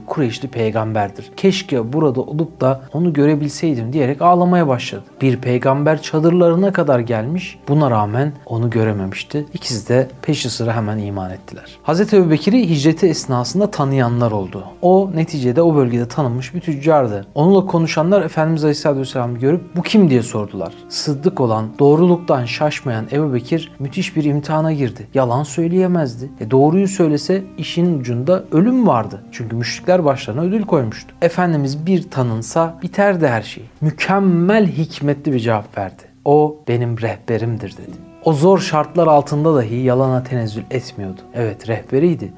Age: 40-59